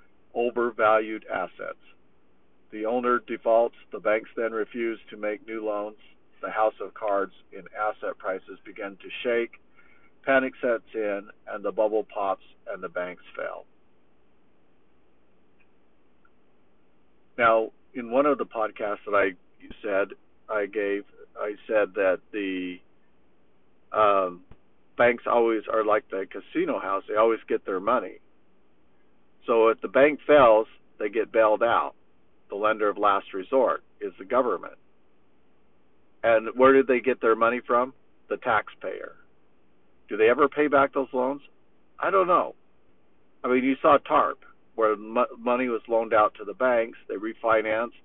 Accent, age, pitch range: American, 50-69, 105-130 Hz